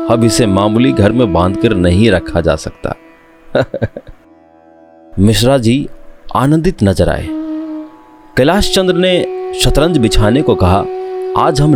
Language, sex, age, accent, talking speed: Hindi, male, 30-49, native, 120 wpm